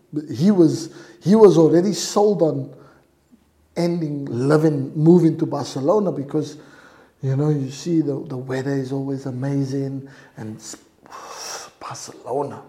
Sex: male